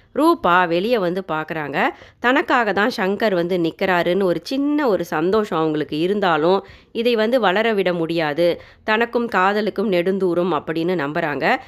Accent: native